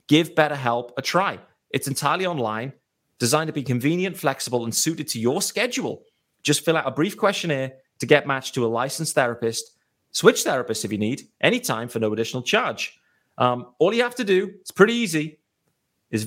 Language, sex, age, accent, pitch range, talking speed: English, male, 30-49, British, 125-165 Hz, 185 wpm